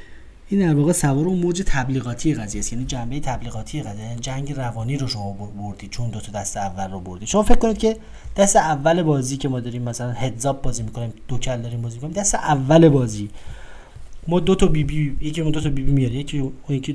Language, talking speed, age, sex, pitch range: Persian, 210 wpm, 30-49, male, 115-170 Hz